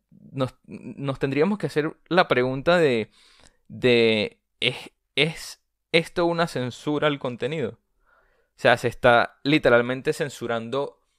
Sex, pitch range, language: male, 115-145 Hz, Spanish